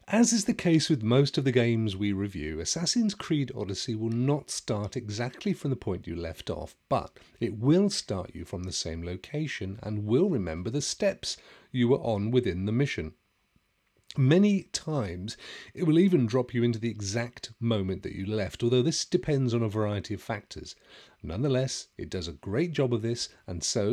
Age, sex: 40-59, male